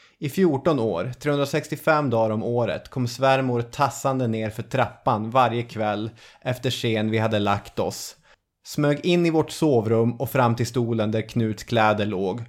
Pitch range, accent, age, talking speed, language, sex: 110-140 Hz, native, 20-39, 165 wpm, Swedish, male